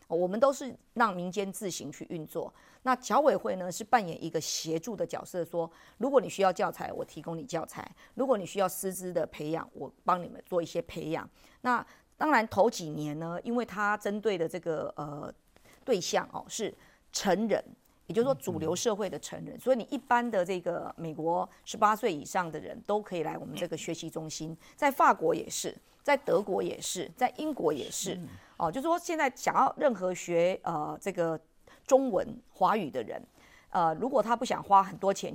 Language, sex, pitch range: Chinese, female, 165-225 Hz